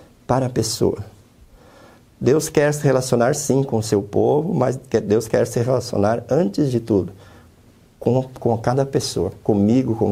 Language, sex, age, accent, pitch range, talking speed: Portuguese, male, 60-79, Brazilian, 110-140 Hz, 155 wpm